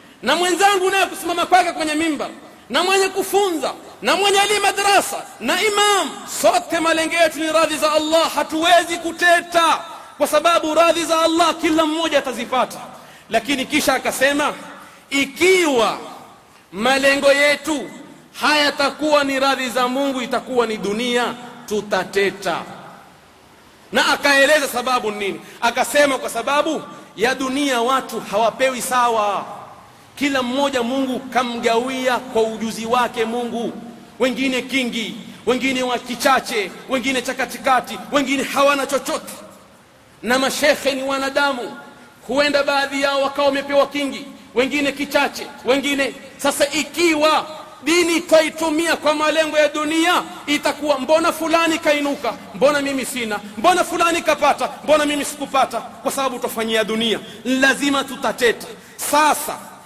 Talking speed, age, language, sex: 120 wpm, 40-59, Swahili, male